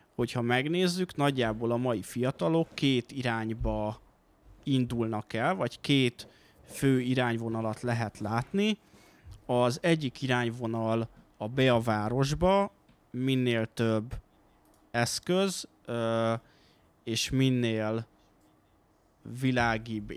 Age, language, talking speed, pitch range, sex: 20-39, Hungarian, 85 wpm, 115-135 Hz, male